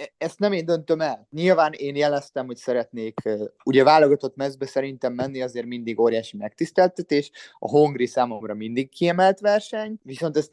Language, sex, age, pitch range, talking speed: Hungarian, male, 20-39, 120-170 Hz, 155 wpm